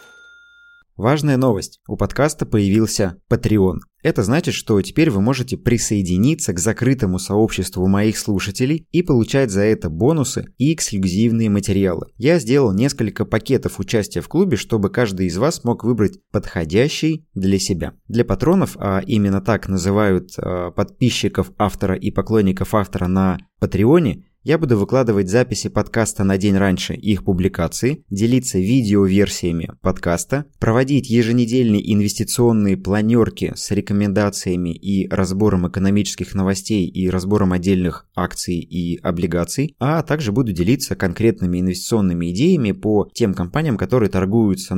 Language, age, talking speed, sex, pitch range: Russian, 20-39, 130 wpm, male, 95-125 Hz